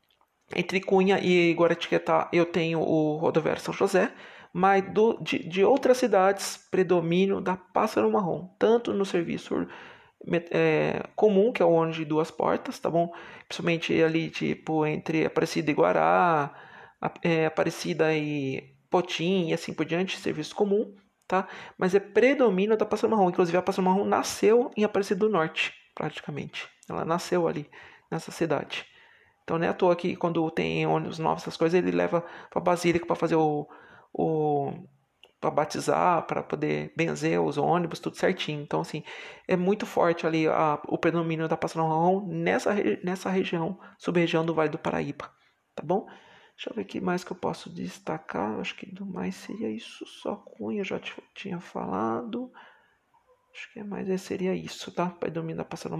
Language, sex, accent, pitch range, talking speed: Portuguese, male, Brazilian, 160-200 Hz, 165 wpm